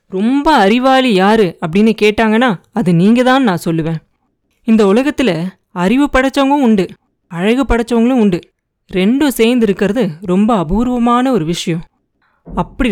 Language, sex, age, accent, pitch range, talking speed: Tamil, female, 20-39, native, 175-245 Hz, 120 wpm